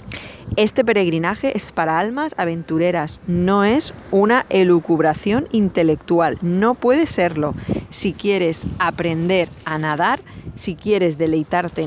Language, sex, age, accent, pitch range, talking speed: Spanish, female, 30-49, Spanish, 165-200 Hz, 110 wpm